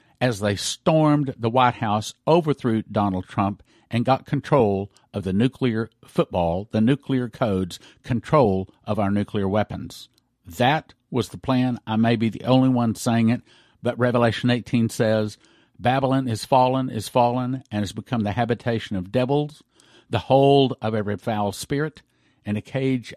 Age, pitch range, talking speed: 50-69, 110-145 Hz, 160 wpm